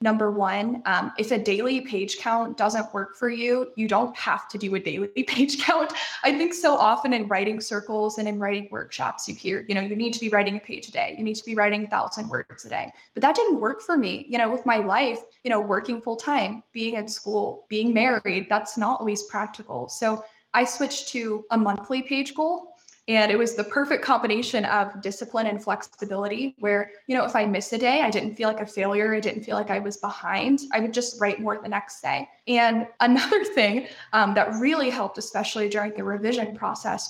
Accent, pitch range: American, 210-255 Hz